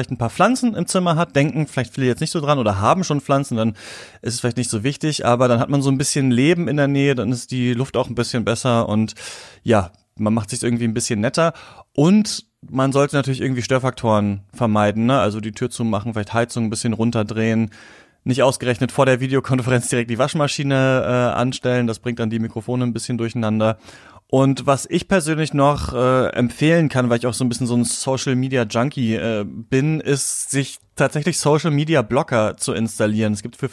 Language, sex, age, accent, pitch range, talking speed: German, male, 30-49, German, 115-140 Hz, 205 wpm